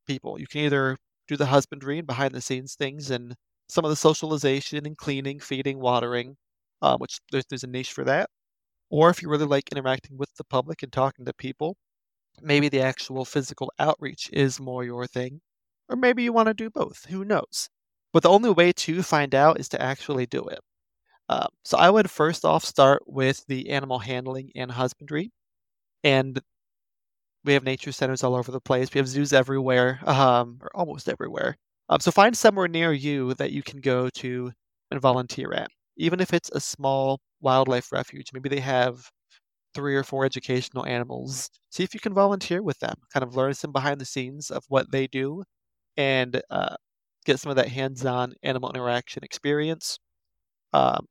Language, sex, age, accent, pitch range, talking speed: English, male, 40-59, American, 130-150 Hz, 190 wpm